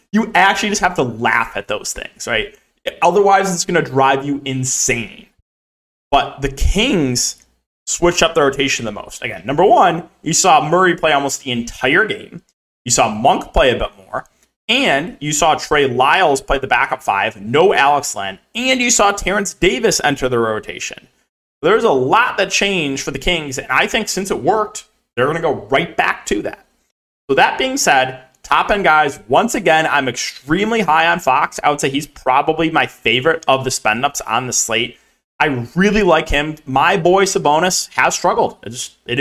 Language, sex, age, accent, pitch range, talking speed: English, male, 20-39, American, 135-195 Hz, 190 wpm